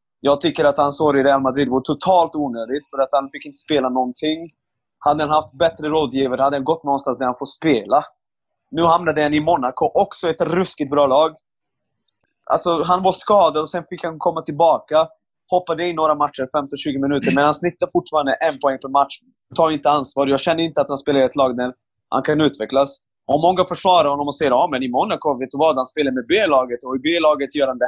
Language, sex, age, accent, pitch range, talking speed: Swedish, male, 20-39, native, 135-165 Hz, 225 wpm